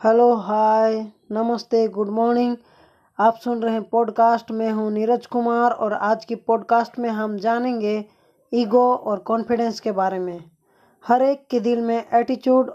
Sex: female